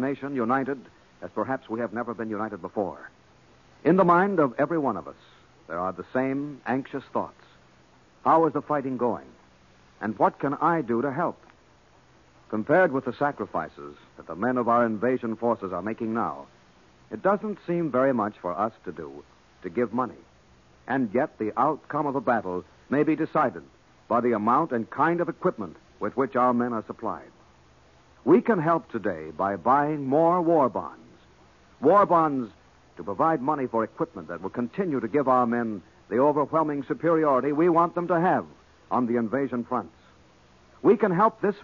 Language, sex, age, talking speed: English, male, 60-79, 180 wpm